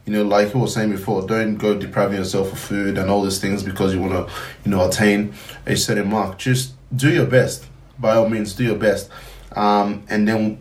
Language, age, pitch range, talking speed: English, 20-39, 105-125 Hz, 225 wpm